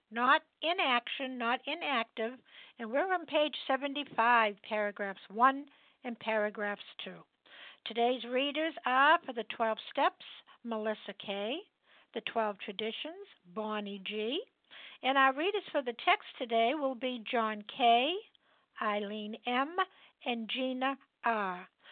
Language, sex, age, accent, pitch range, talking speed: English, female, 60-79, American, 225-285 Hz, 125 wpm